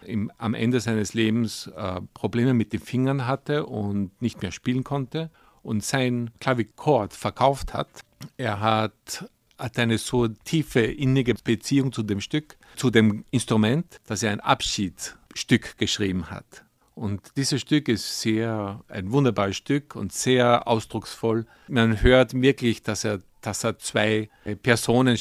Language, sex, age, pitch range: Chinese, male, 50-69, 105-130 Hz